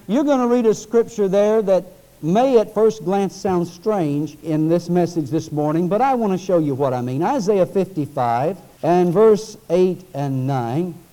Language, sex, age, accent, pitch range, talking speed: English, male, 60-79, American, 170-240 Hz, 190 wpm